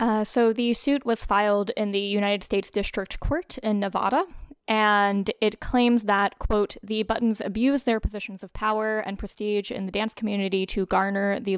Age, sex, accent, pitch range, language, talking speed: 10-29, female, American, 195-220 Hz, English, 175 wpm